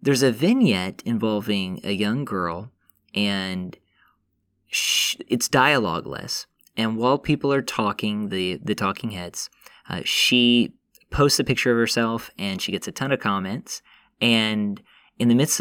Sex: male